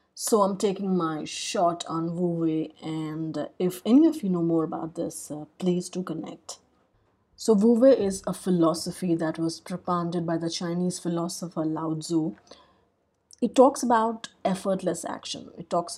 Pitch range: 170-190 Hz